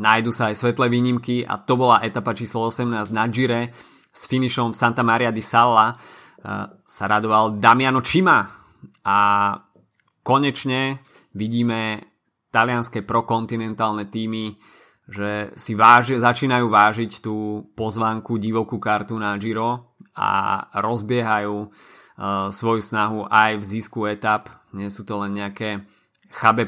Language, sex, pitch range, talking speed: Slovak, male, 110-120 Hz, 125 wpm